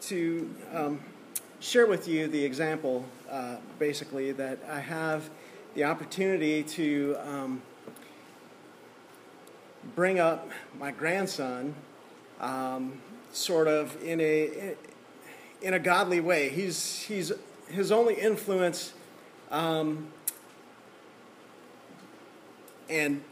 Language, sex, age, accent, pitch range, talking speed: English, male, 40-59, American, 150-180 Hz, 95 wpm